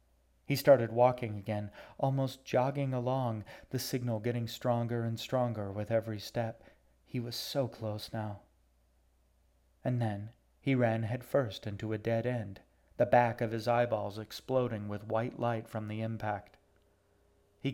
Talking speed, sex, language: 145 wpm, male, English